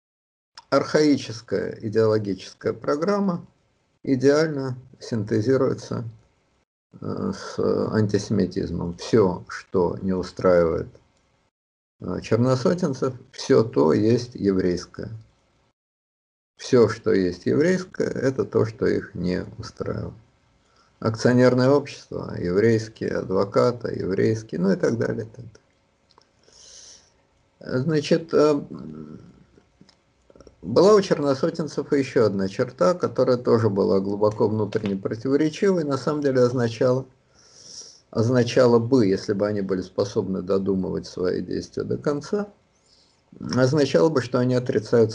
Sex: male